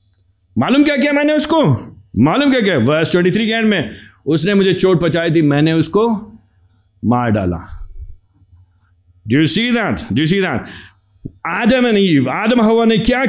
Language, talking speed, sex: Hindi, 130 wpm, male